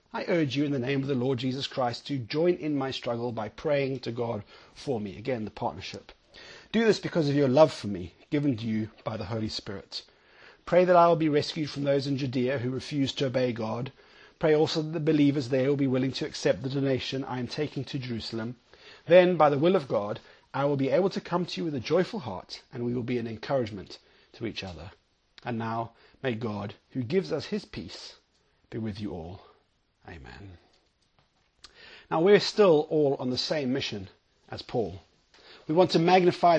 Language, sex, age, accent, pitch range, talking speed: English, male, 30-49, British, 125-160 Hz, 210 wpm